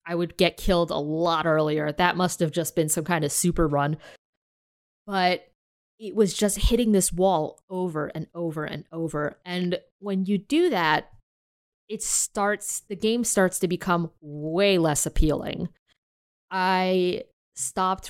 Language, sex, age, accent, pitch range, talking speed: English, female, 20-39, American, 170-225 Hz, 155 wpm